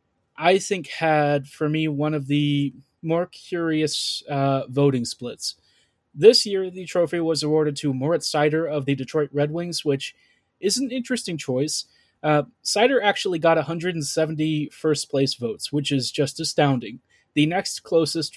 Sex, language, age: male, English, 30-49